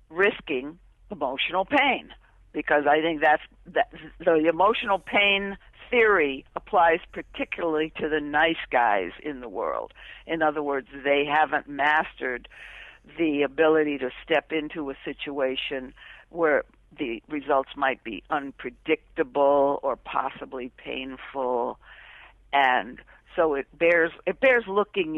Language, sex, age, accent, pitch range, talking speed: English, female, 60-79, American, 145-200 Hz, 115 wpm